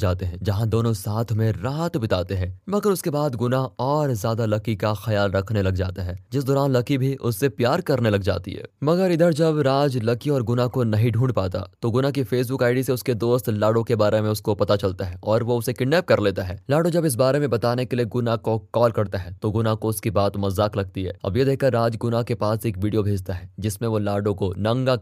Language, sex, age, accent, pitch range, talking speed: Hindi, male, 20-39, native, 105-130 Hz, 140 wpm